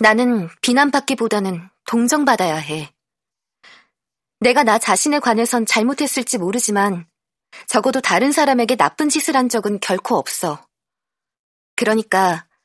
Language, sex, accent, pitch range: Korean, female, native, 210-275 Hz